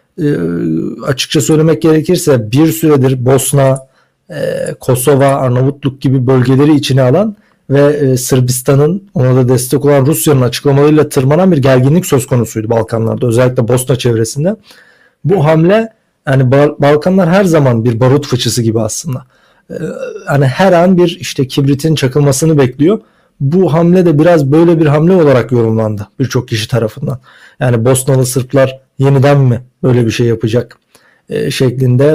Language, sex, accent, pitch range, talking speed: Turkish, male, native, 125-150 Hz, 130 wpm